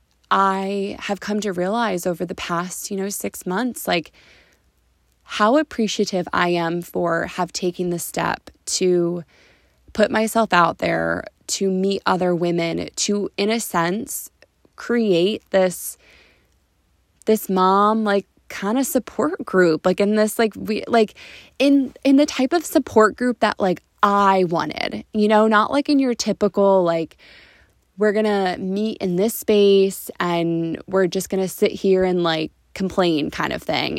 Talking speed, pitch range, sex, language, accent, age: 155 wpm, 180-215 Hz, female, English, American, 20-39